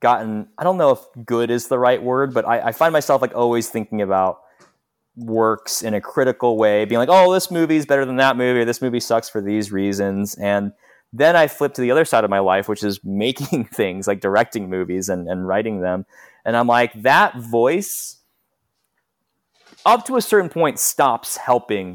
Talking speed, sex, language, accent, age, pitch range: 205 wpm, male, English, American, 20-39, 100-125 Hz